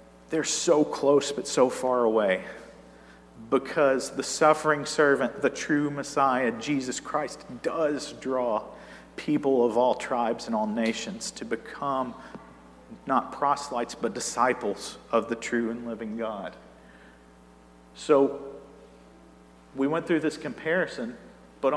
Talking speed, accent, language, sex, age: 120 wpm, American, English, male, 40-59